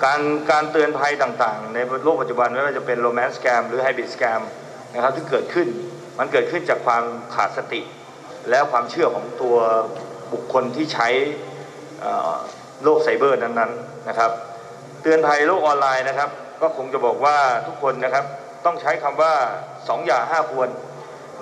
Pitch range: 125-160 Hz